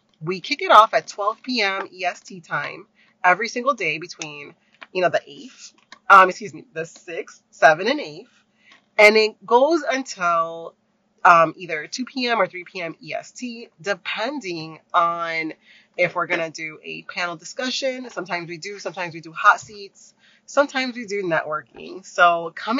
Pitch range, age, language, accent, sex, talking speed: 170-215 Hz, 30-49, English, American, female, 160 wpm